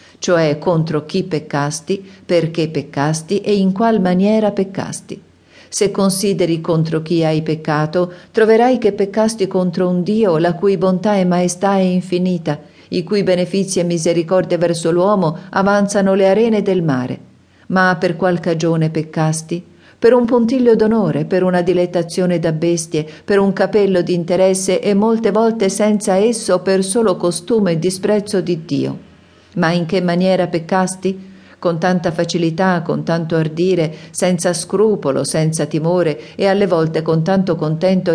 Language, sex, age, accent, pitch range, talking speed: Italian, female, 50-69, native, 160-195 Hz, 150 wpm